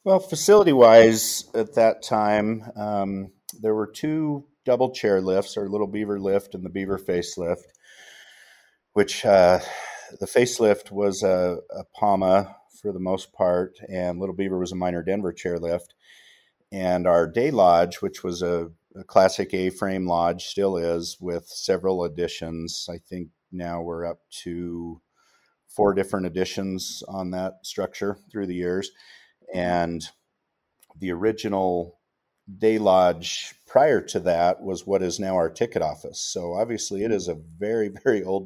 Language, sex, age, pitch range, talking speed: English, male, 40-59, 85-95 Hz, 145 wpm